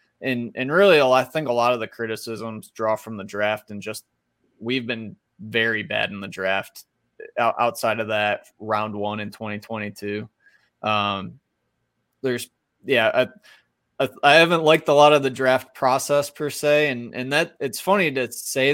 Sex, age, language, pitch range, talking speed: male, 20-39, English, 110-135 Hz, 165 wpm